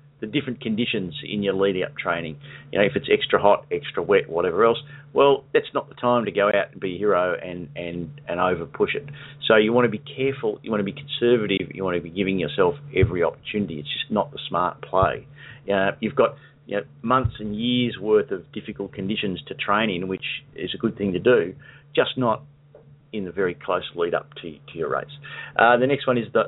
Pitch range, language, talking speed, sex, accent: 100-145 Hz, English, 230 wpm, male, Australian